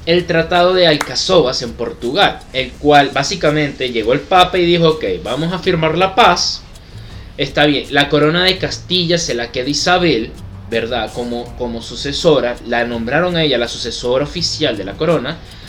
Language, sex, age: Spanish, male, 20-39